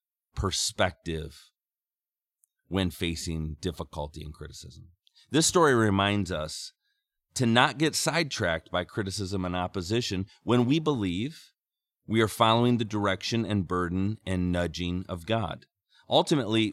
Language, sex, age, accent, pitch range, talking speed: English, male, 30-49, American, 85-115 Hz, 120 wpm